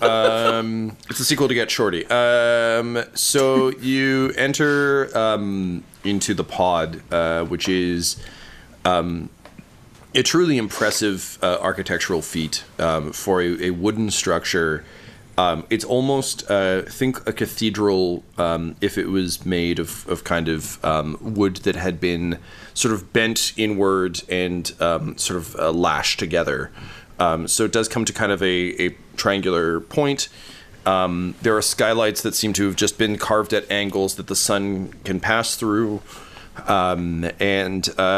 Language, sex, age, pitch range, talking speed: English, male, 30-49, 90-115 Hz, 150 wpm